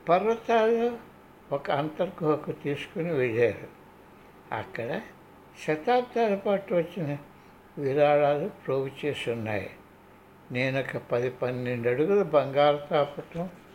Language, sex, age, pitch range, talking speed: Telugu, male, 60-79, 130-185 Hz, 85 wpm